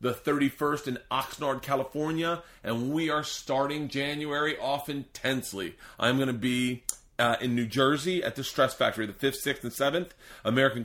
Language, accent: English, American